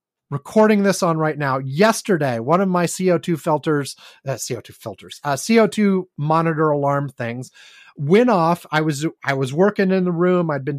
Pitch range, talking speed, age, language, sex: 135-185 Hz, 190 wpm, 30-49, English, male